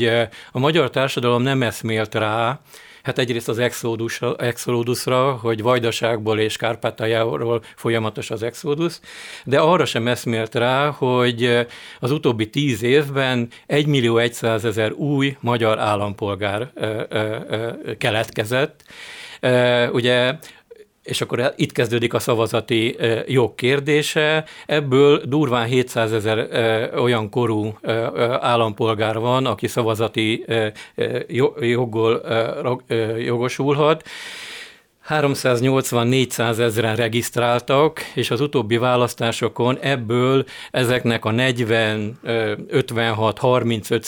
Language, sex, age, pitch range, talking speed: Hungarian, male, 50-69, 115-130 Hz, 95 wpm